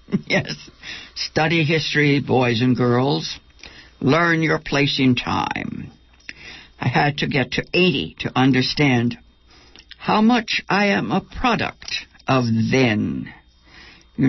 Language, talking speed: English, 120 wpm